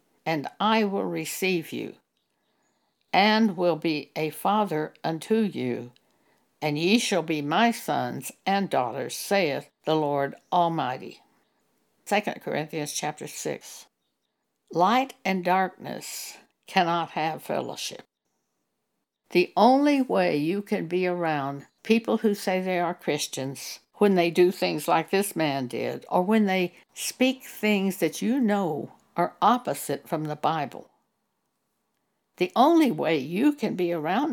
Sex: female